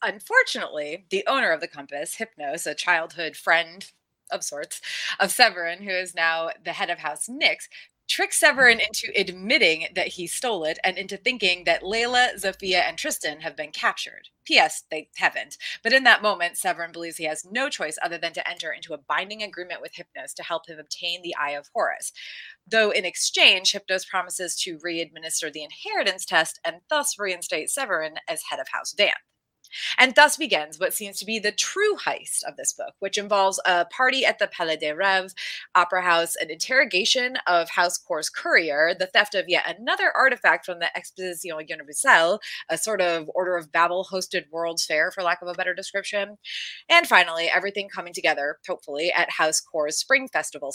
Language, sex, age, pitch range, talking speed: English, female, 30-49, 165-225 Hz, 185 wpm